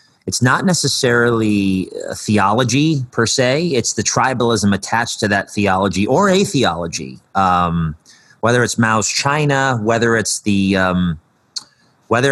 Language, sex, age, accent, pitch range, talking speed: English, male, 30-49, American, 95-115 Hz, 125 wpm